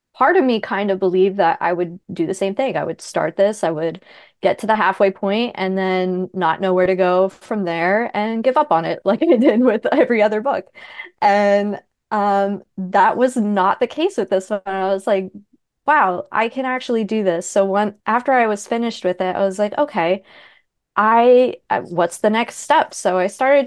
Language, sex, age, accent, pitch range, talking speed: English, female, 20-39, American, 175-210 Hz, 215 wpm